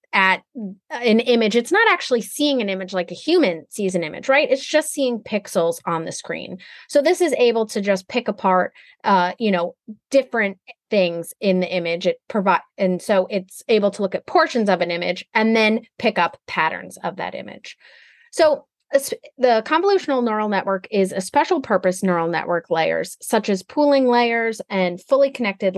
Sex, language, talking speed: female, English, 185 wpm